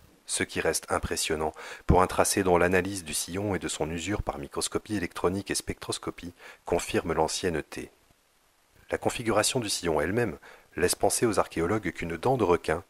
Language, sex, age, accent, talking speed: French, male, 40-59, French, 165 wpm